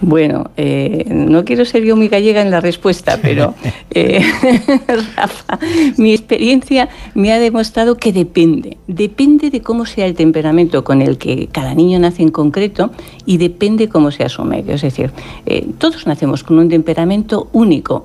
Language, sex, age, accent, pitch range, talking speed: Spanish, female, 60-79, Spanish, 160-225 Hz, 165 wpm